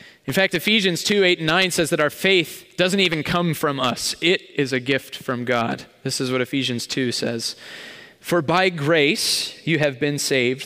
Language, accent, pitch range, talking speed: English, American, 125-175 Hz, 195 wpm